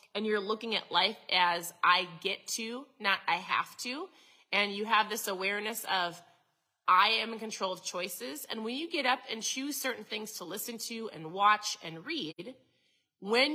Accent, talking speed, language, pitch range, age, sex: American, 185 wpm, English, 185-225 Hz, 30-49, female